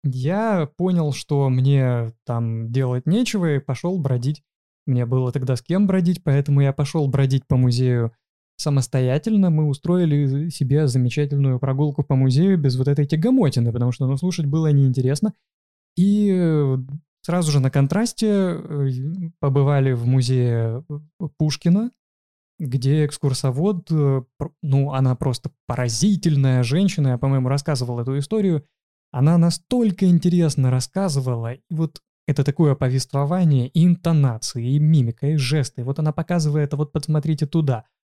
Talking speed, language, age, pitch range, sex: 130 wpm, Russian, 20-39, 130-165 Hz, male